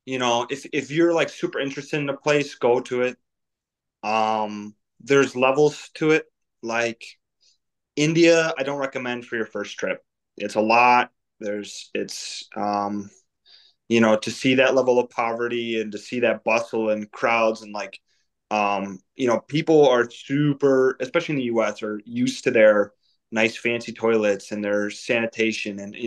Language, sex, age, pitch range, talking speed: English, male, 20-39, 110-130 Hz, 170 wpm